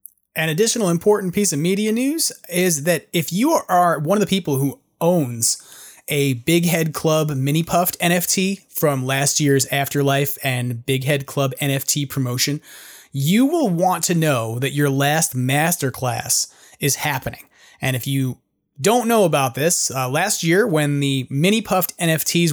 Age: 30-49